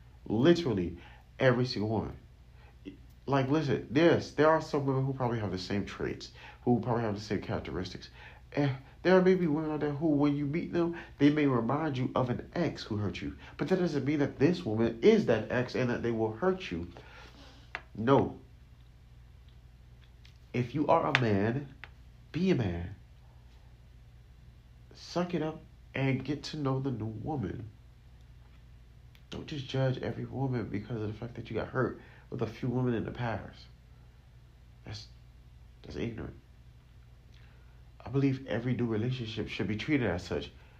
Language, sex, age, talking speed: English, male, 40-59, 165 wpm